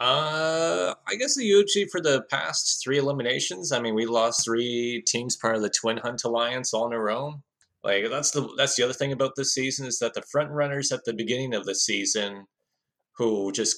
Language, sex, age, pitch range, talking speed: English, male, 20-39, 95-120 Hz, 215 wpm